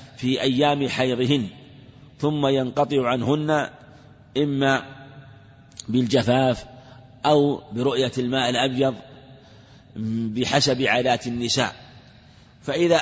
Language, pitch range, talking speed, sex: Arabic, 125-145 Hz, 75 wpm, male